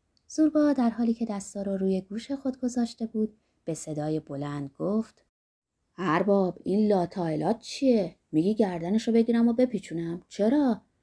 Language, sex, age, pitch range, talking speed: Persian, female, 20-39, 145-190 Hz, 135 wpm